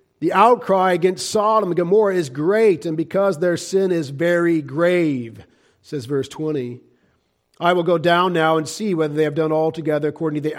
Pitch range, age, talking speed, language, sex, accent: 135-155 Hz, 50-69, 185 wpm, English, male, American